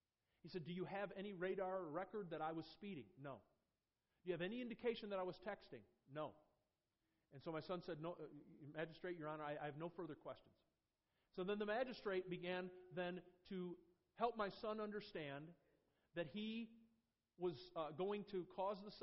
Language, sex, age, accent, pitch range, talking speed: English, male, 40-59, American, 150-205 Hz, 185 wpm